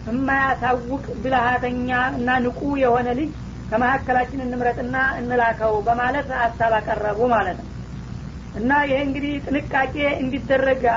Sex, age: female, 40-59